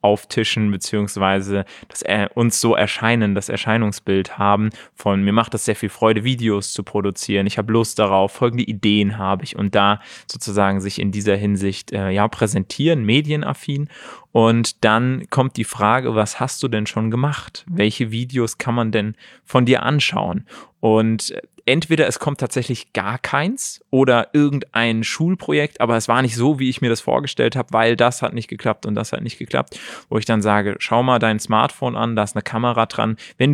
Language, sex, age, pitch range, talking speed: German, male, 30-49, 105-130 Hz, 185 wpm